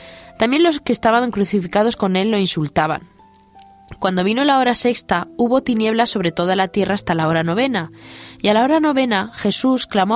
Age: 20-39